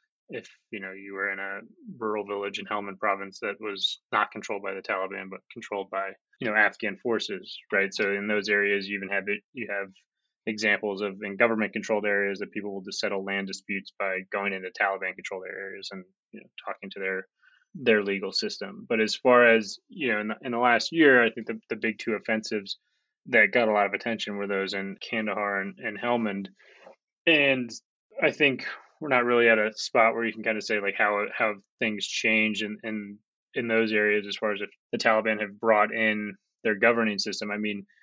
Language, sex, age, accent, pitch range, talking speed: English, male, 20-39, American, 100-110 Hz, 215 wpm